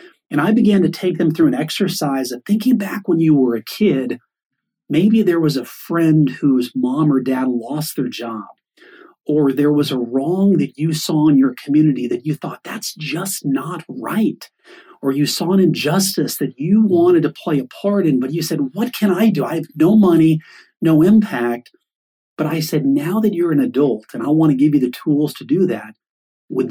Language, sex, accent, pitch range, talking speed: English, male, American, 145-205 Hz, 210 wpm